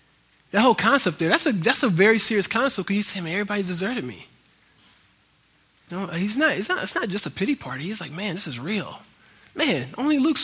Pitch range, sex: 160-205 Hz, male